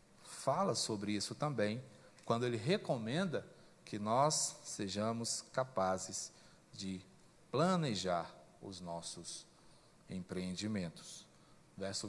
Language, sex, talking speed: Portuguese, male, 85 wpm